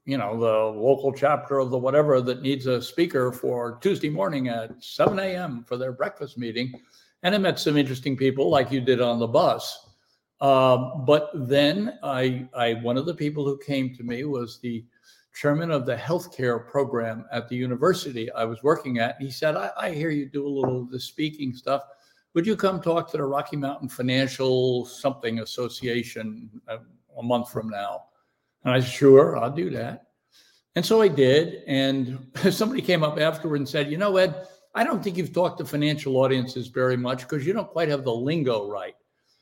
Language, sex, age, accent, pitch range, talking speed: English, male, 60-79, American, 125-160 Hz, 200 wpm